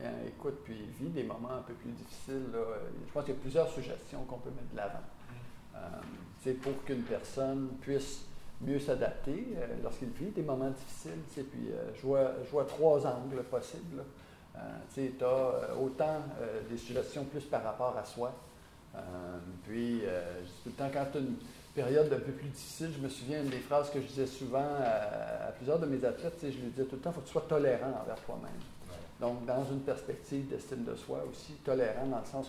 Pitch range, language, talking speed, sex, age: 125-150 Hz, French, 205 wpm, male, 50-69